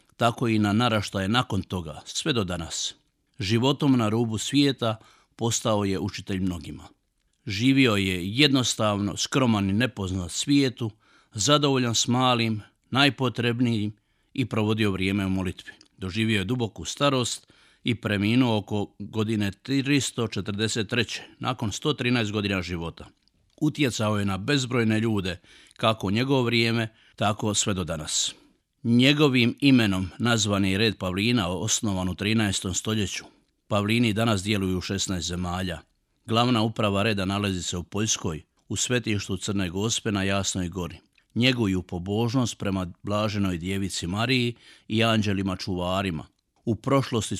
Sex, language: male, Croatian